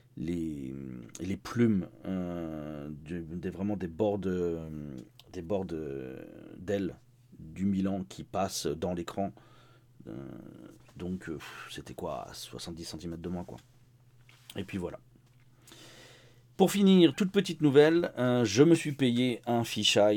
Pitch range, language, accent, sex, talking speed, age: 90-120 Hz, French, French, male, 115 wpm, 40-59